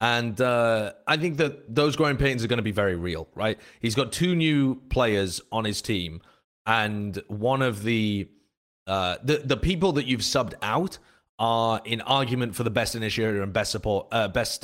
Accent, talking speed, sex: British, 195 wpm, male